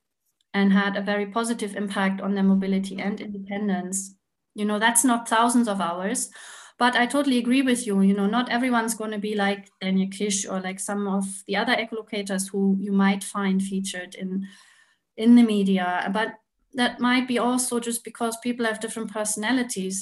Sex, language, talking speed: female, English, 185 wpm